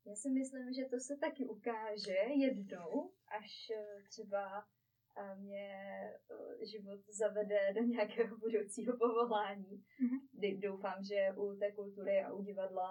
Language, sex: Czech, female